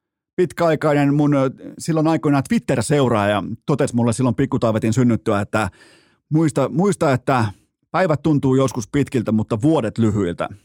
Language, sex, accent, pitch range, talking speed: Finnish, male, native, 115-145 Hz, 120 wpm